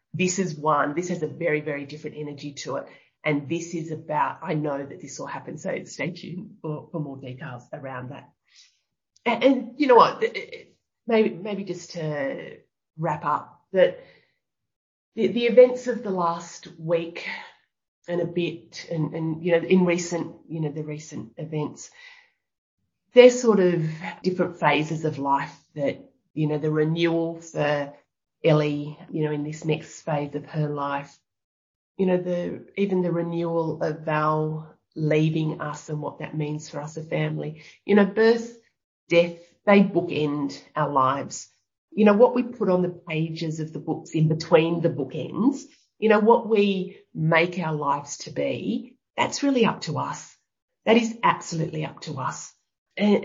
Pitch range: 150-195 Hz